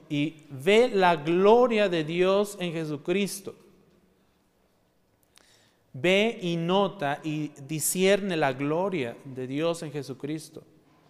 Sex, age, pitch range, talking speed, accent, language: male, 40-59, 155-200 Hz, 105 wpm, Mexican, Spanish